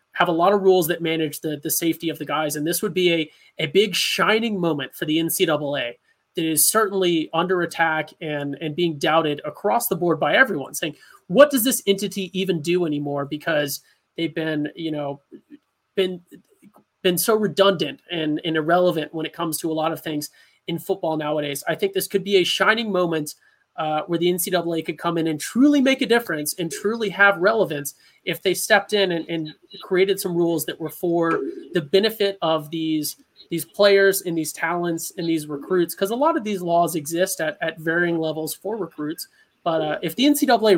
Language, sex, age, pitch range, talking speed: English, male, 30-49, 160-195 Hz, 200 wpm